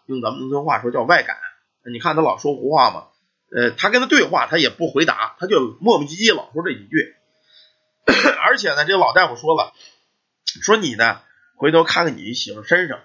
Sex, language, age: male, Chinese, 20-39